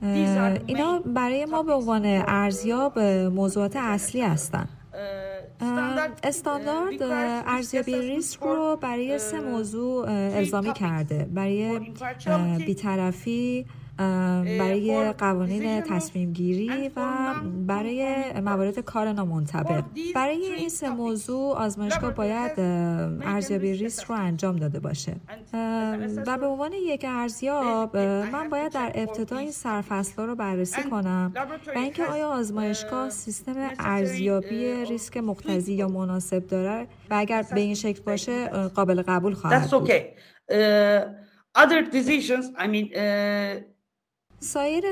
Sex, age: female, 30-49